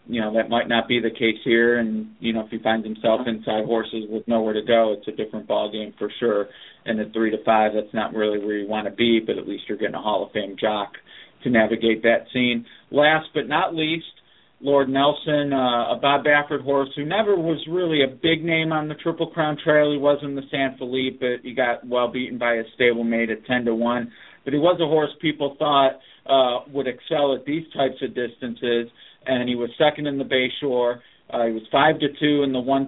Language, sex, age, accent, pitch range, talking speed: English, male, 40-59, American, 115-145 Hz, 230 wpm